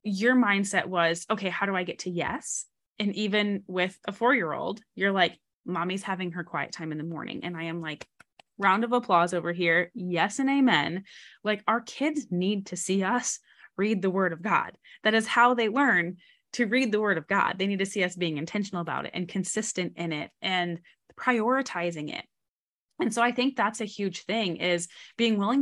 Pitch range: 175-215 Hz